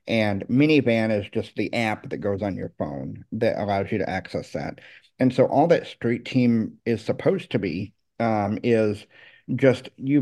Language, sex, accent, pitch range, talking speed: English, male, American, 105-125 Hz, 180 wpm